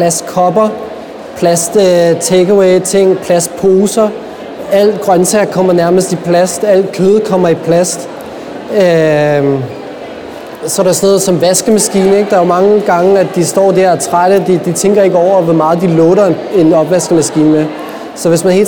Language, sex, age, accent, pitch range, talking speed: Danish, male, 30-49, native, 160-190 Hz, 165 wpm